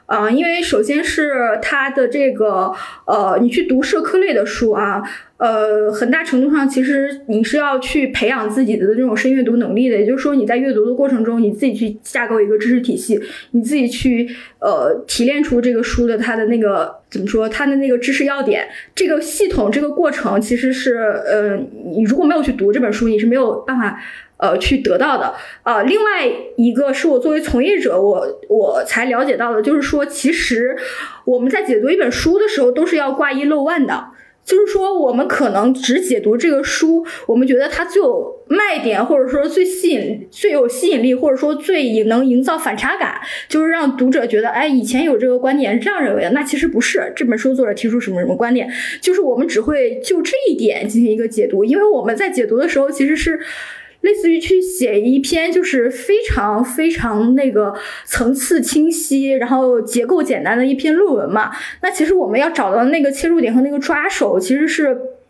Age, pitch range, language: 20-39, 240-320 Hz, Chinese